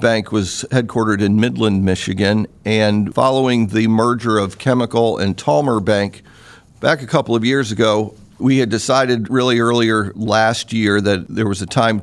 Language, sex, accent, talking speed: English, male, American, 165 wpm